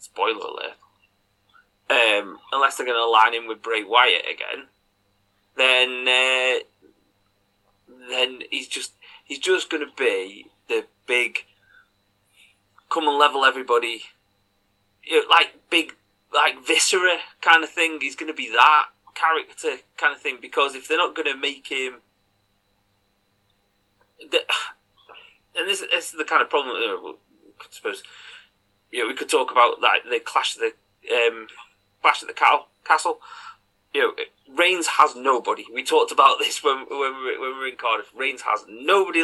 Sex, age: male, 30-49